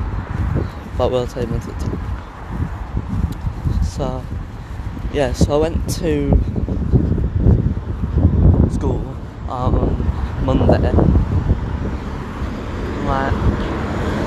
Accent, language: British, English